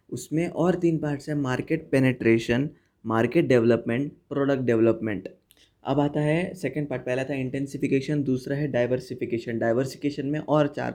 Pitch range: 120-145 Hz